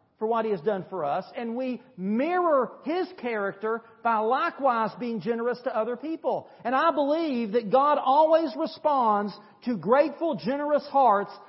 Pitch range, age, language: 200-270 Hz, 40-59, English